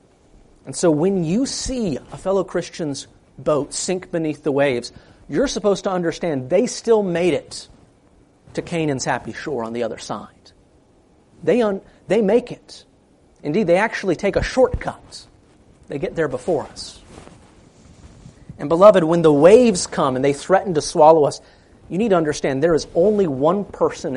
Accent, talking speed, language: American, 165 wpm, English